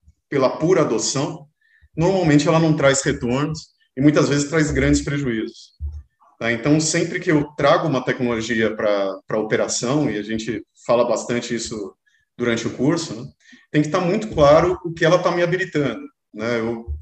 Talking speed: 160 wpm